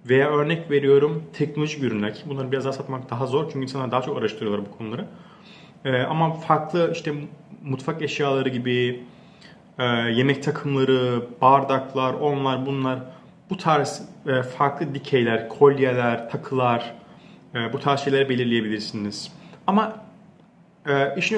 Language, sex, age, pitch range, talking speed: Turkish, male, 30-49, 130-180 Hz, 120 wpm